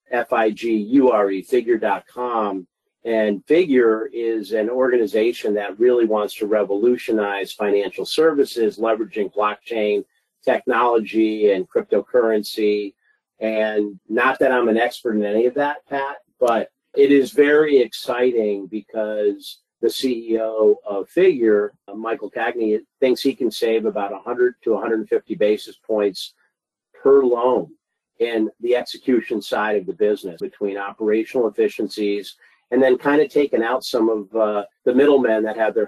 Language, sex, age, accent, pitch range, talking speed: English, male, 50-69, American, 105-145 Hz, 130 wpm